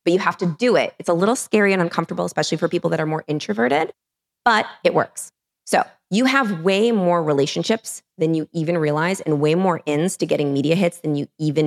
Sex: female